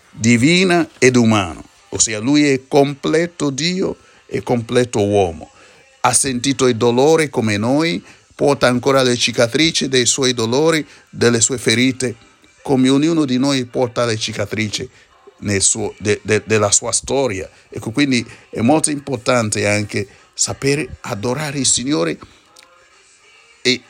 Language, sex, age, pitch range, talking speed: Italian, male, 60-79, 110-140 Hz, 130 wpm